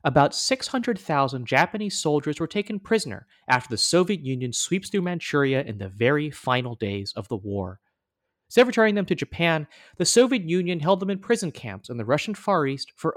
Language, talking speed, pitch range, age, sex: English, 180 wpm, 120-190 Hz, 30-49, male